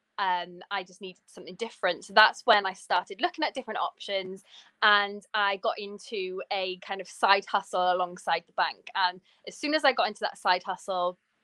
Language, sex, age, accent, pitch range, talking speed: English, female, 20-39, British, 180-220 Hz, 195 wpm